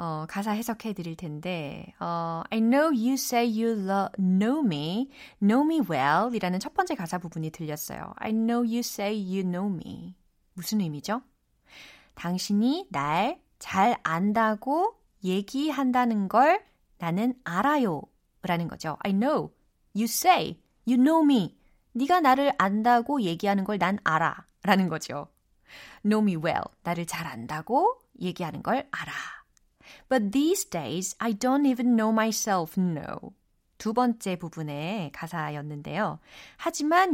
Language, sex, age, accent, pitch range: Korean, female, 20-39, native, 175-250 Hz